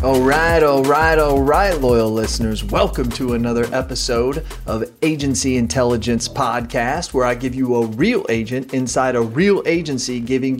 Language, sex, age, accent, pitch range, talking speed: English, male, 30-49, American, 120-155 Hz, 160 wpm